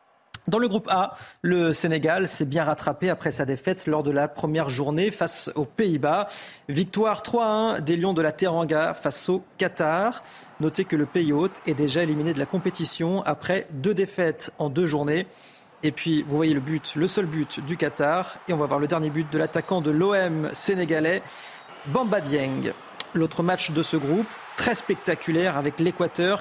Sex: male